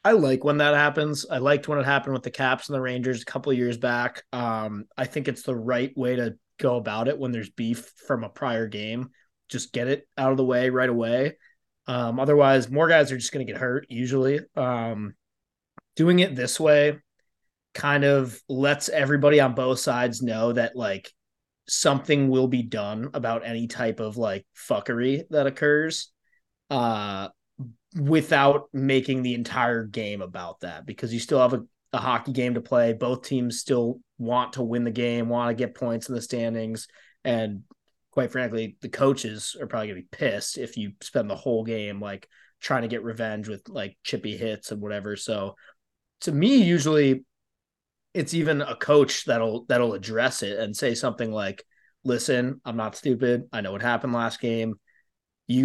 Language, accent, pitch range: English, American, 115-135 Hz